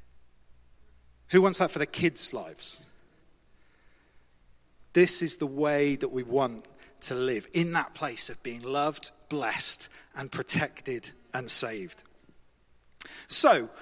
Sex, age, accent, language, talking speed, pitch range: male, 40-59, British, English, 120 wpm, 130-180 Hz